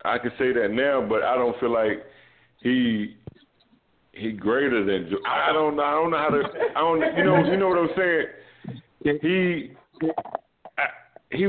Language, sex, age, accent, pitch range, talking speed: English, male, 50-69, American, 115-150 Hz, 185 wpm